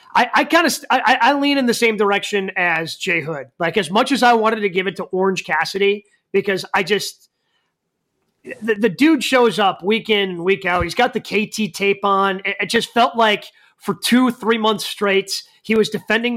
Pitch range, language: 195-240 Hz, English